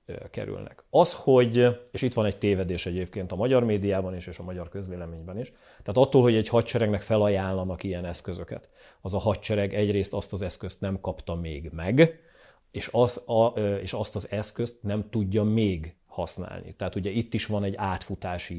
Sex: male